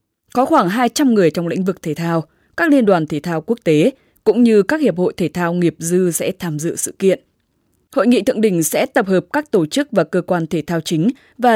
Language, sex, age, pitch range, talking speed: English, female, 10-29, 170-225 Hz, 245 wpm